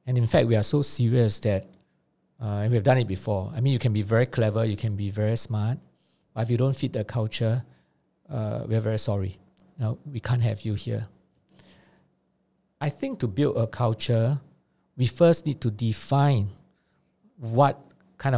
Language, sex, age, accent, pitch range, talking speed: English, male, 50-69, Malaysian, 110-130 Hz, 190 wpm